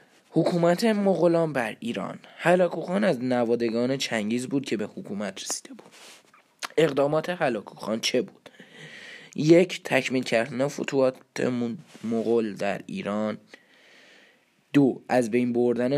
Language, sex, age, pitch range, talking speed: Persian, male, 10-29, 120-160 Hz, 110 wpm